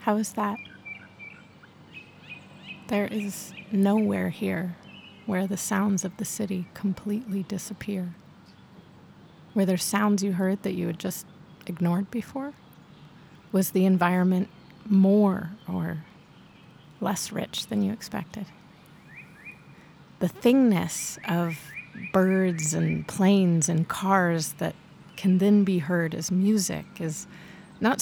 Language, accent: English, American